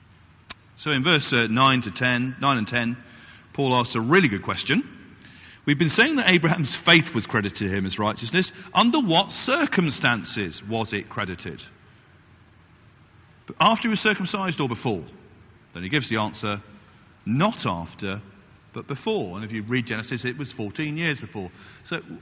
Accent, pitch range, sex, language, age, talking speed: British, 110-165 Hz, male, English, 40-59, 165 wpm